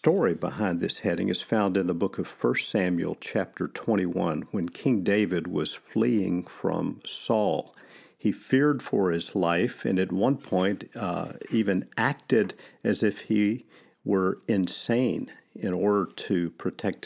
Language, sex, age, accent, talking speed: English, male, 50-69, American, 150 wpm